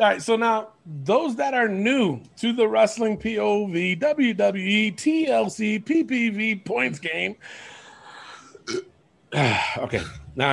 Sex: male